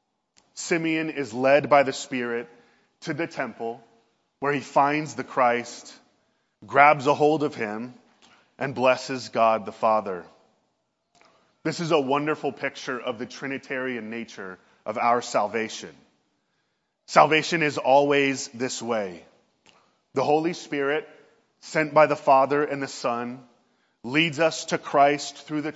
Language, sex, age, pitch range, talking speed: English, male, 30-49, 120-155 Hz, 135 wpm